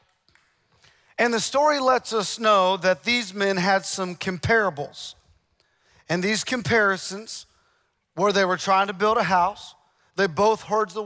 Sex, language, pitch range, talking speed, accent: male, English, 185-230 Hz, 145 wpm, American